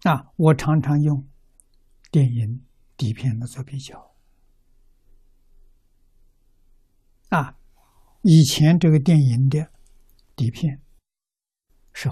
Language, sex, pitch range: Chinese, male, 115-160 Hz